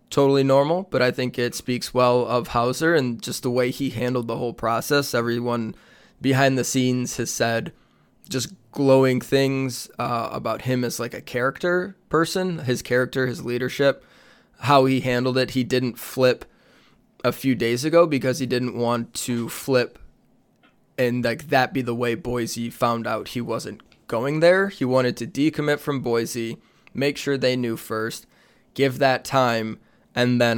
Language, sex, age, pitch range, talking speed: English, male, 20-39, 120-135 Hz, 170 wpm